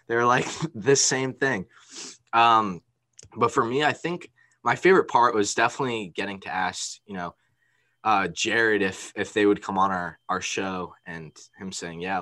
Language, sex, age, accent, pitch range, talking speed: English, male, 20-39, American, 90-110 Hz, 175 wpm